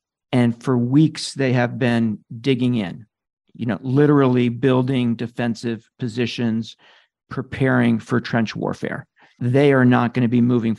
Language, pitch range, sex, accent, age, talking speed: English, 115-130 Hz, male, American, 50-69, 140 wpm